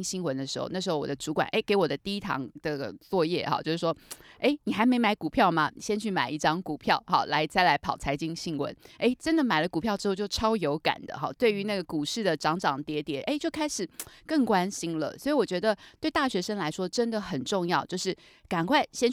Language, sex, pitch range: Chinese, female, 170-235 Hz